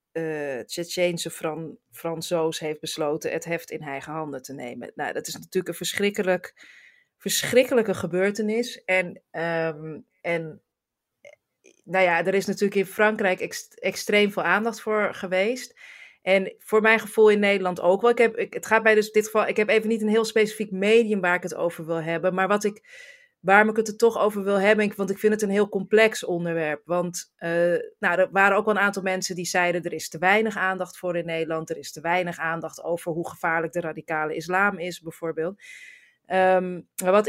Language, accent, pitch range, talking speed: Dutch, Dutch, 170-215 Hz, 195 wpm